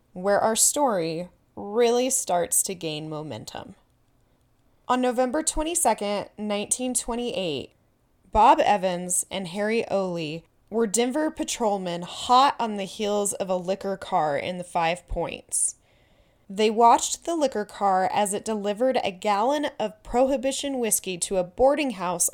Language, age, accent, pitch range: English, 20-39, American, 185-240 Hz